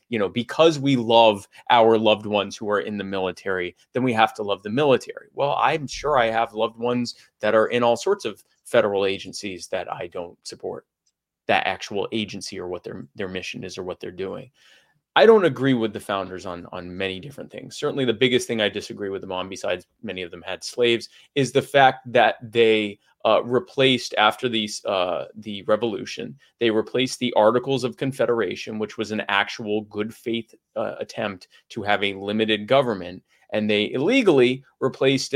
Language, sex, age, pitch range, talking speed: English, male, 20-39, 105-135 Hz, 190 wpm